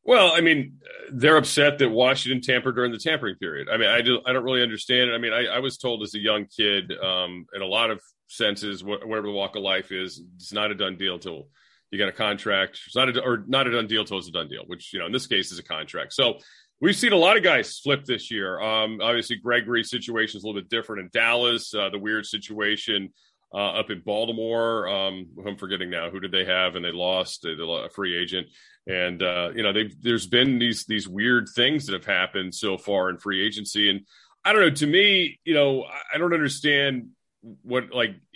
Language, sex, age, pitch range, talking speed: English, male, 40-59, 100-125 Hz, 240 wpm